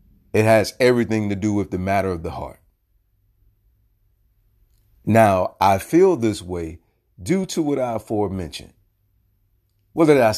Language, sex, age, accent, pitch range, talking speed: English, male, 40-59, American, 90-115 Hz, 140 wpm